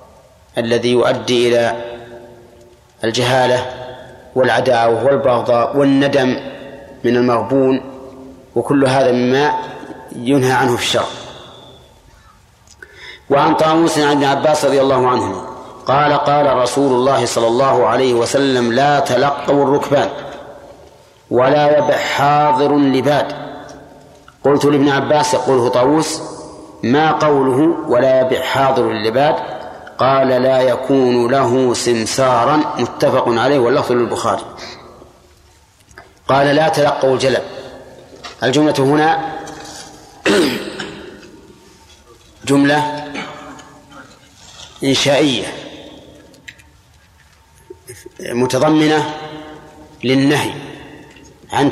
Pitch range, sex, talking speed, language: 120-145 Hz, male, 80 wpm, Arabic